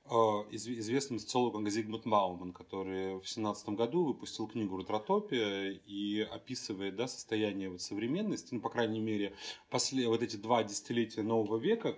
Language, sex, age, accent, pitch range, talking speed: Russian, male, 30-49, native, 100-120 Hz, 140 wpm